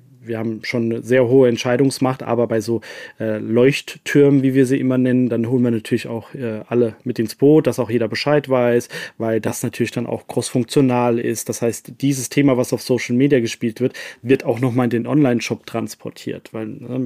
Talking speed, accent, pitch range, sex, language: 205 wpm, German, 120-135 Hz, male, German